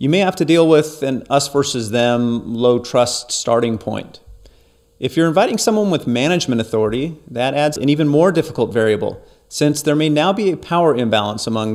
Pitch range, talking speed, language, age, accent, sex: 115-155 Hz, 190 wpm, English, 40-59, American, male